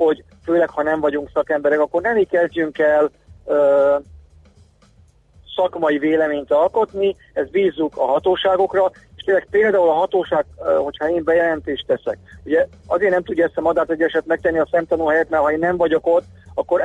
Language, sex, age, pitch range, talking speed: Hungarian, male, 40-59, 145-175 Hz, 175 wpm